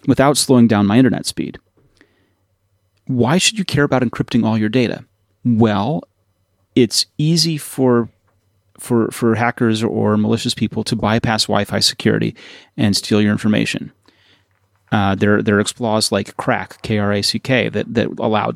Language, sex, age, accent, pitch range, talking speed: English, male, 30-49, American, 105-125 Hz, 140 wpm